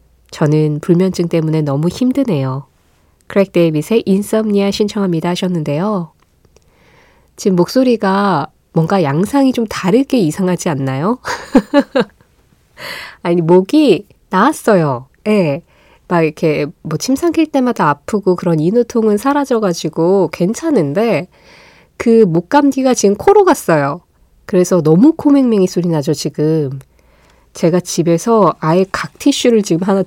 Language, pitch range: Korean, 160-225 Hz